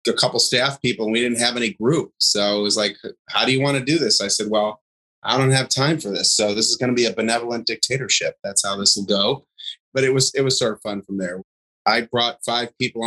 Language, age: English, 30-49